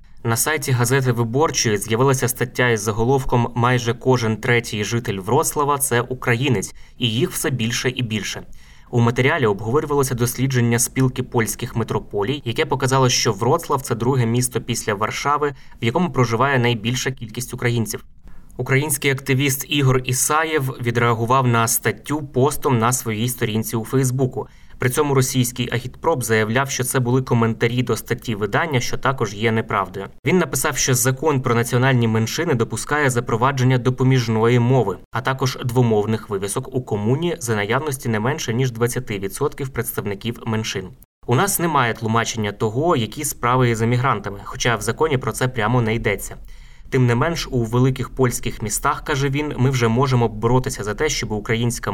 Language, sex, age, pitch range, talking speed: Ukrainian, male, 20-39, 115-135 Hz, 155 wpm